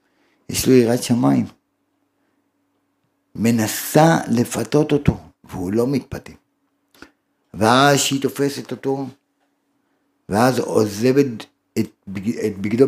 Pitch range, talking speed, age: 115-165 Hz, 95 wpm, 60-79